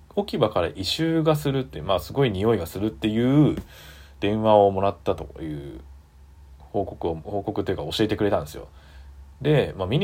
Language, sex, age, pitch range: Japanese, male, 20-39, 75-110 Hz